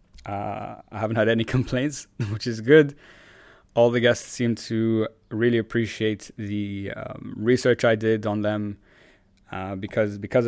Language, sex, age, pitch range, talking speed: English, male, 20-39, 105-120 Hz, 150 wpm